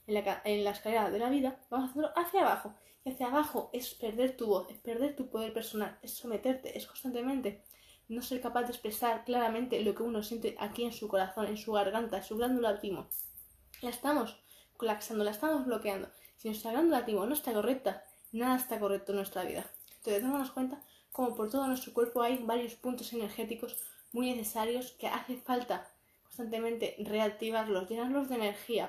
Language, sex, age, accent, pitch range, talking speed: Spanish, female, 20-39, Spanish, 210-250 Hz, 185 wpm